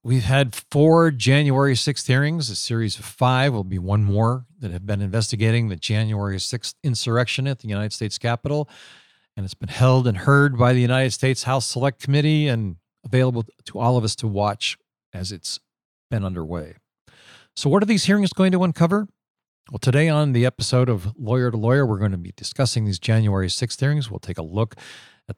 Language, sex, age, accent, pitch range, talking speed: English, male, 50-69, American, 105-140 Hz, 195 wpm